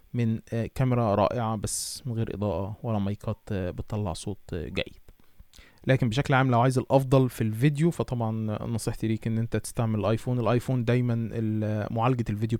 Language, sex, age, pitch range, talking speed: Arabic, male, 20-39, 105-120 Hz, 150 wpm